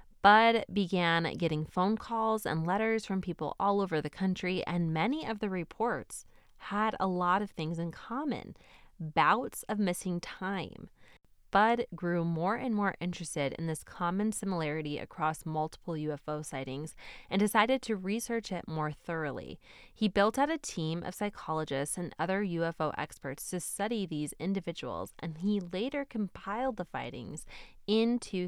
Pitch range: 160-210 Hz